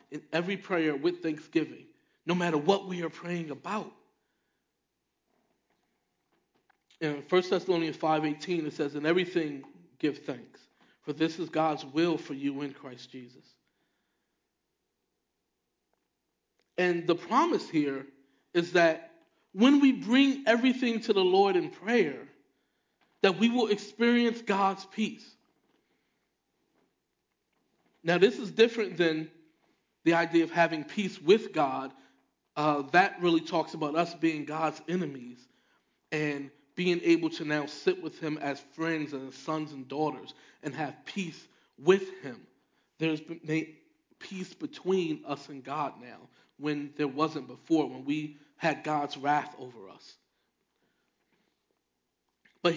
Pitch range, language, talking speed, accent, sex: 150-200 Hz, English, 125 wpm, American, male